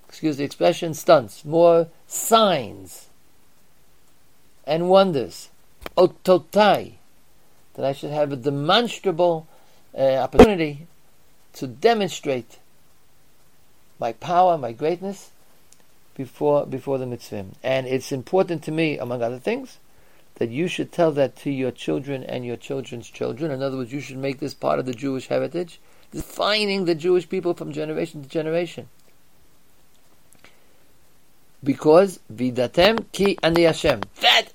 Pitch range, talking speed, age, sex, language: 130-180 Hz, 125 wpm, 50-69, male, English